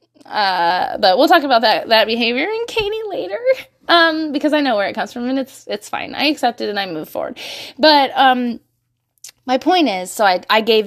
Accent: American